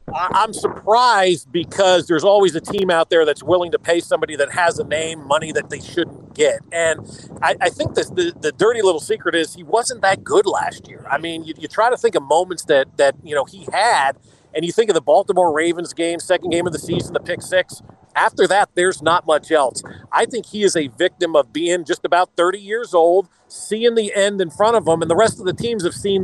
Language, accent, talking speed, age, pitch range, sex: English, American, 240 wpm, 40-59, 170-225 Hz, male